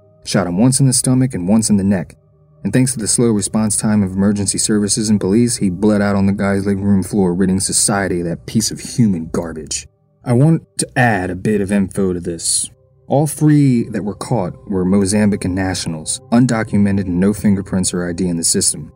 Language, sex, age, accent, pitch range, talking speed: English, male, 30-49, American, 90-110 Hz, 210 wpm